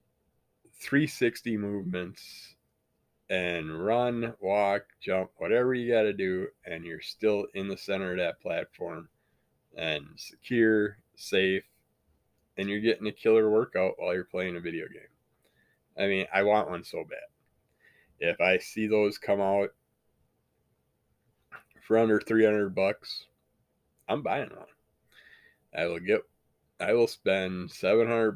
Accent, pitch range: American, 95-120 Hz